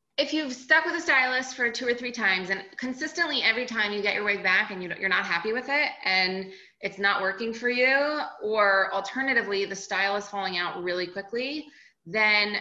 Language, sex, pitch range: English, female, 180-235 Hz